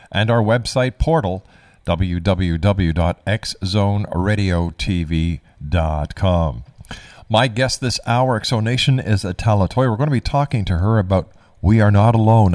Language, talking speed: English, 125 wpm